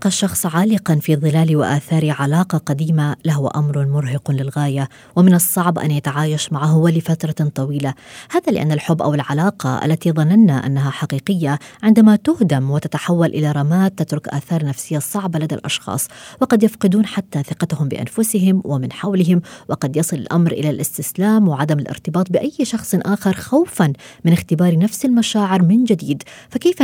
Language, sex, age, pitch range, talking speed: Arabic, female, 20-39, 150-200 Hz, 140 wpm